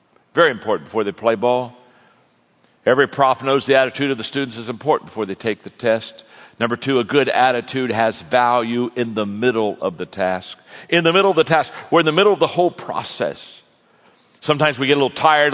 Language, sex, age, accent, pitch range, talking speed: English, male, 60-79, American, 120-155 Hz, 210 wpm